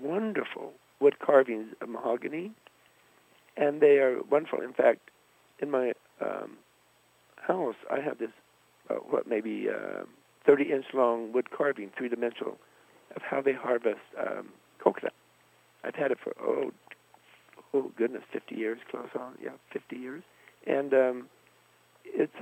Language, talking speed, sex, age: English, 135 wpm, male, 60-79